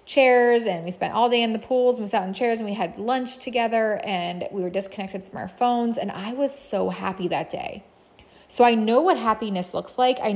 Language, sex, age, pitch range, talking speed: English, female, 20-39, 190-240 Hz, 240 wpm